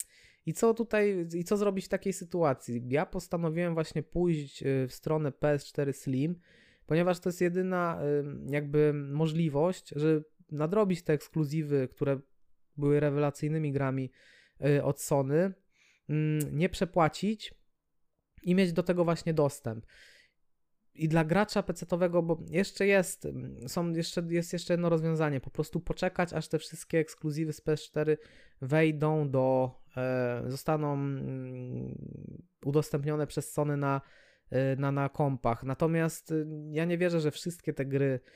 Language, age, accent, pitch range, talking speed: Polish, 20-39, native, 135-160 Hz, 125 wpm